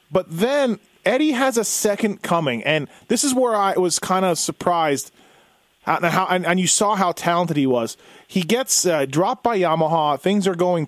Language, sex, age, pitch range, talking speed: English, male, 30-49, 150-195 Hz, 175 wpm